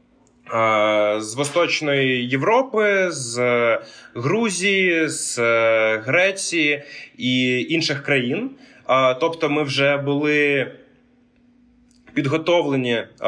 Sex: male